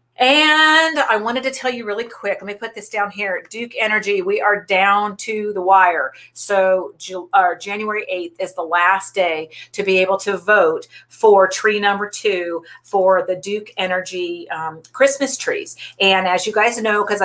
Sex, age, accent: female, 40-59, American